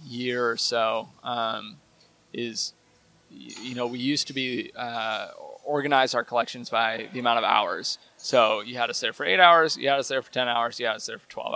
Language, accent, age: English, American, 20-39